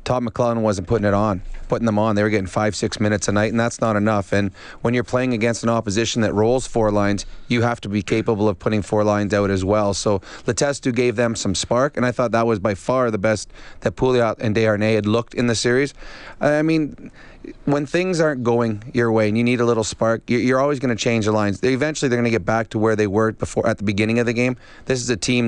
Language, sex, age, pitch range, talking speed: English, male, 30-49, 110-125 Hz, 260 wpm